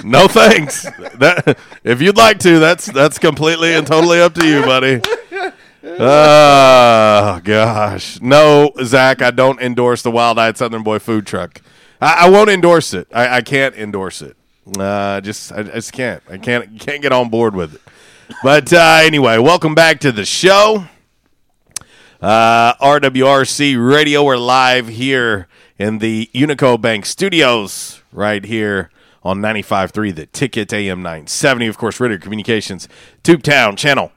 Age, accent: 40-59, American